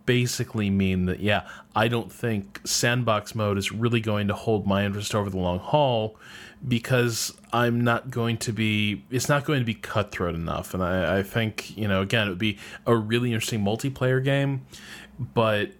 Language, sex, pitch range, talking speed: English, male, 105-130 Hz, 185 wpm